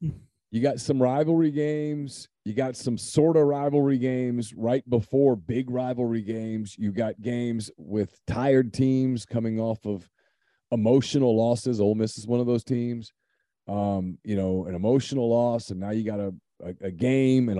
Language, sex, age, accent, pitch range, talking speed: English, male, 40-59, American, 105-130 Hz, 170 wpm